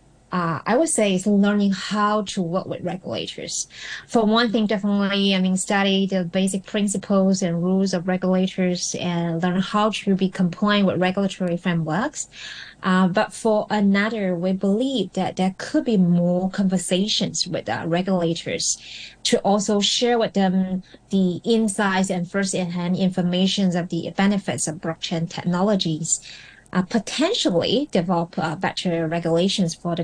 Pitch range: 175-200 Hz